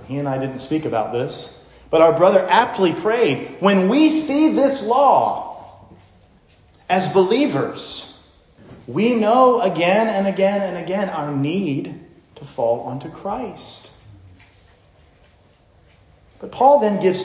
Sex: male